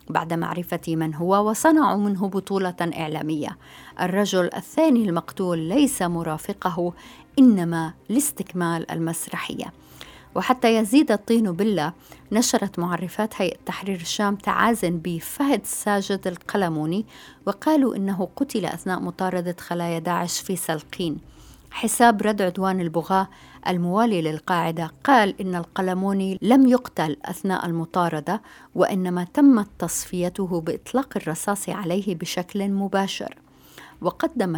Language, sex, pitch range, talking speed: Arabic, female, 170-205 Hz, 105 wpm